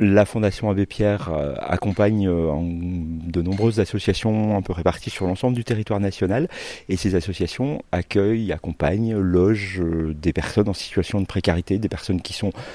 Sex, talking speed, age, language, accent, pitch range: male, 150 wpm, 40-59, French, French, 85-105 Hz